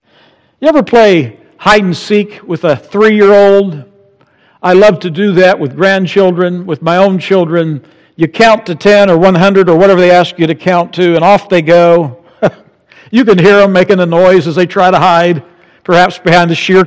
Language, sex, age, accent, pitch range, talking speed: English, male, 60-79, American, 180-235 Hz, 190 wpm